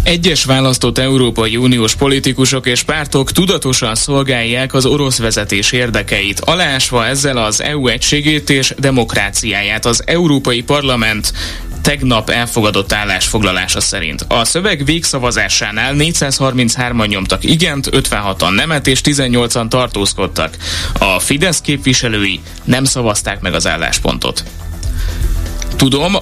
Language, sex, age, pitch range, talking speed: Hungarian, male, 20-39, 110-140 Hz, 110 wpm